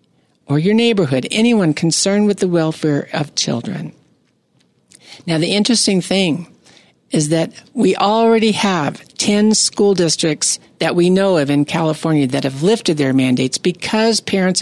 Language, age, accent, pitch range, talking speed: English, 60-79, American, 155-210 Hz, 145 wpm